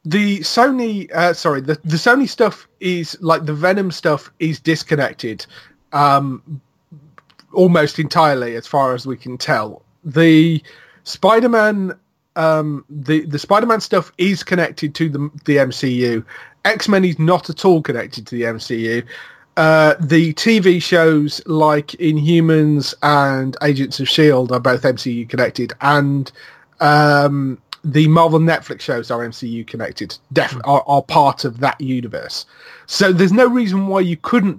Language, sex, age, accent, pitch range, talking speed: English, male, 30-49, British, 140-175 Hz, 145 wpm